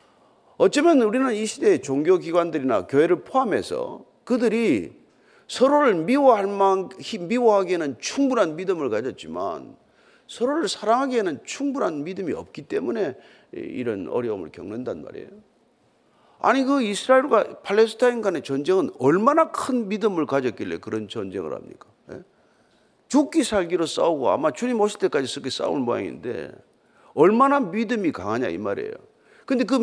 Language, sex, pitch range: Korean, male, 205-300 Hz